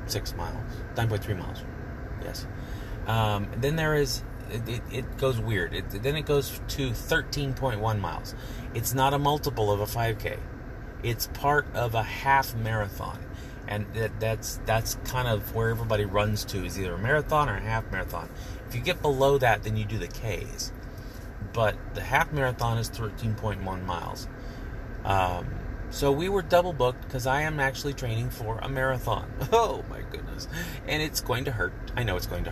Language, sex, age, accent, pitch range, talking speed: English, male, 30-49, American, 90-120 Hz, 175 wpm